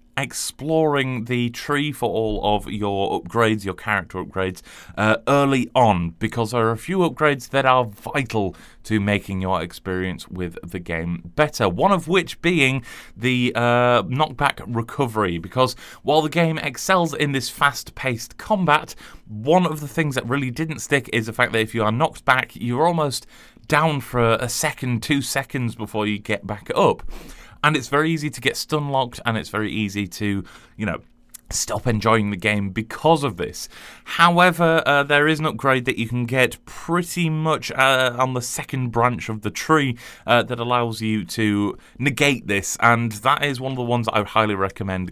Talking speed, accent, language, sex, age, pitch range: 185 wpm, British, English, male, 30-49, 105-145 Hz